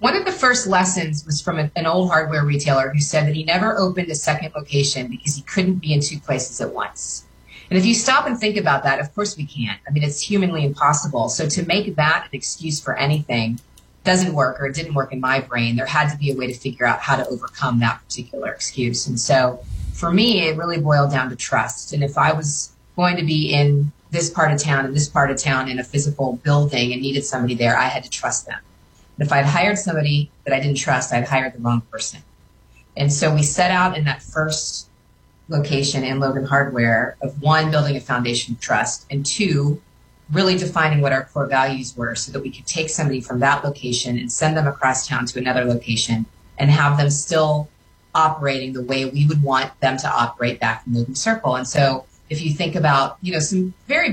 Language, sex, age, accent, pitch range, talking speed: English, female, 30-49, American, 130-155 Hz, 225 wpm